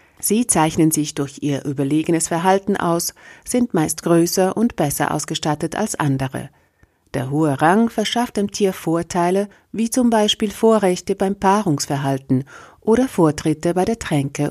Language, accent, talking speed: German, German, 140 wpm